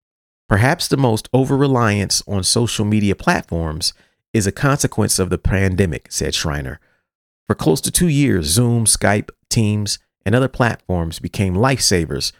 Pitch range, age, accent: 90-130 Hz, 40-59, American